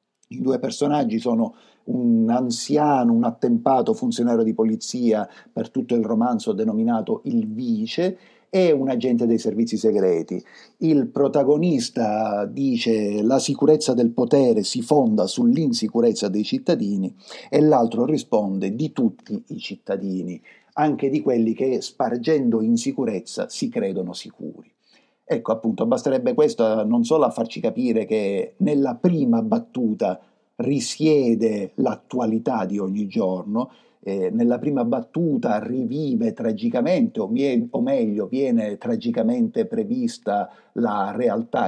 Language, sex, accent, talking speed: Italian, male, native, 120 wpm